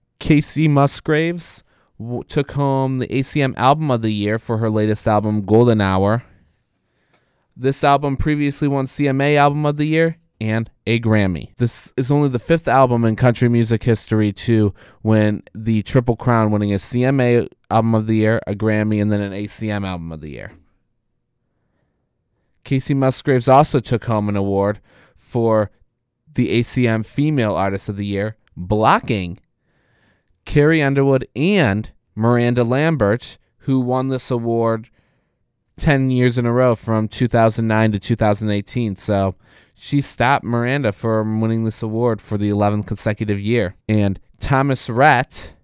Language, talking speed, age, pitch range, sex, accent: English, 145 wpm, 20-39, 105-135 Hz, male, American